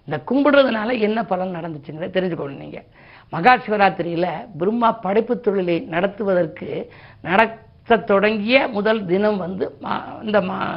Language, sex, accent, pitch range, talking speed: Tamil, female, native, 175-225 Hz, 115 wpm